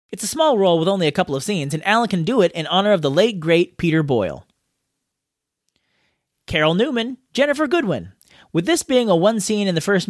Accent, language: American, English